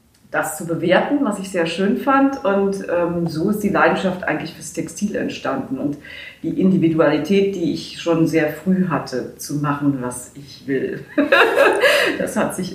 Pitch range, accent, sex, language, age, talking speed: 165-205 Hz, German, female, German, 40-59, 165 wpm